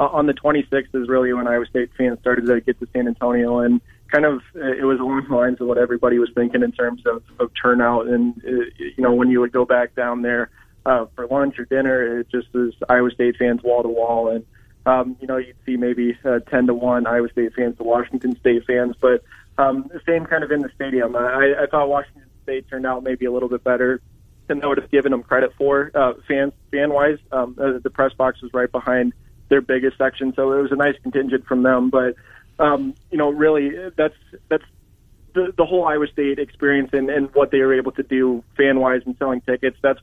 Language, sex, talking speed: English, male, 220 wpm